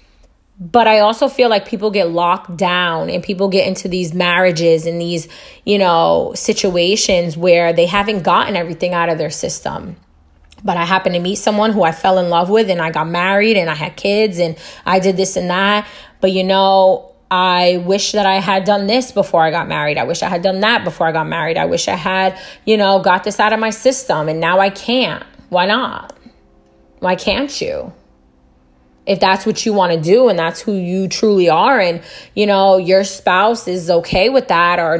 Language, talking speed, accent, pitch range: English, 210 wpm, American, 170-205 Hz